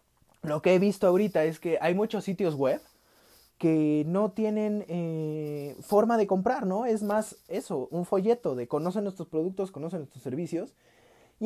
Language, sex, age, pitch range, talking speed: Spanish, male, 20-39, 155-220 Hz, 170 wpm